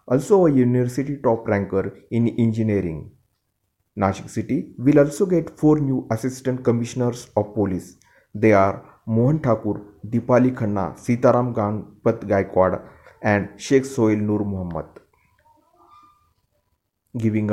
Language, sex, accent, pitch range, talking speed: Marathi, male, native, 105-130 Hz, 115 wpm